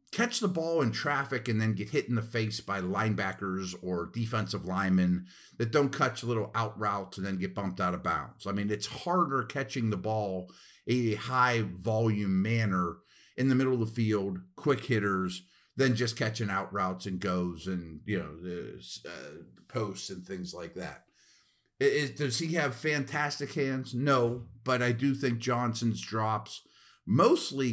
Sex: male